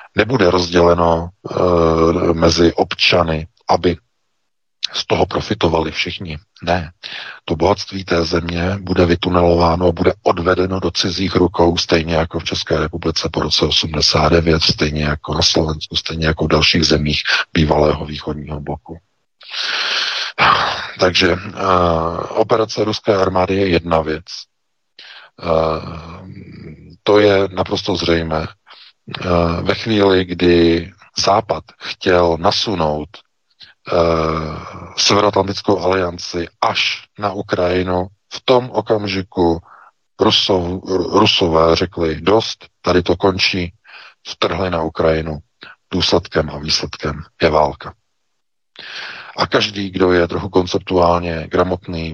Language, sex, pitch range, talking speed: Czech, male, 80-95 Hz, 105 wpm